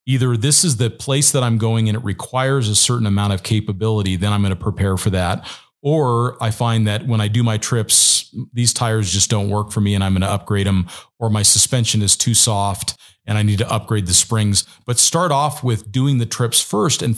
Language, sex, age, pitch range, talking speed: English, male, 40-59, 105-120 Hz, 235 wpm